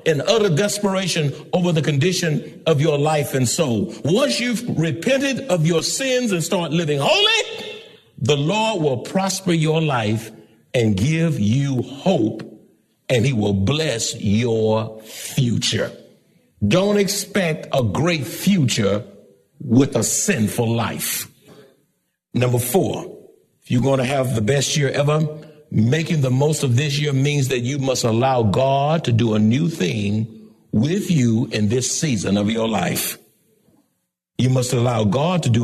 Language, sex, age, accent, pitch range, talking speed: English, male, 60-79, American, 120-180 Hz, 150 wpm